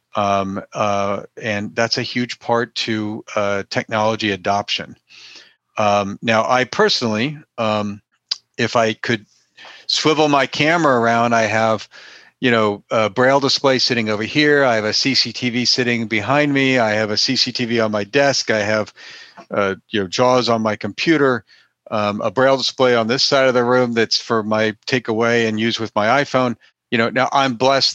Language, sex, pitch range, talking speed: English, male, 105-125 Hz, 170 wpm